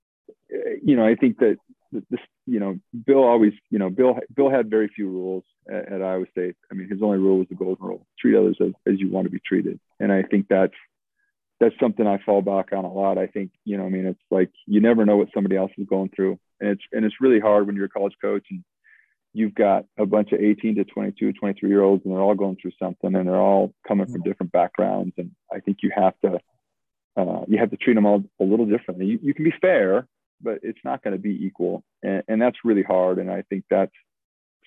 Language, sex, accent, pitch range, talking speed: English, male, American, 95-105 Hz, 245 wpm